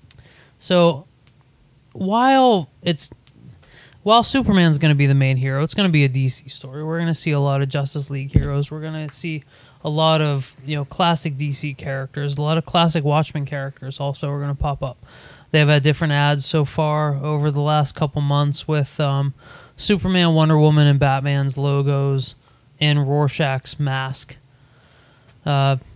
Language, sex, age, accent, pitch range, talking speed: English, male, 20-39, American, 135-155 Hz, 175 wpm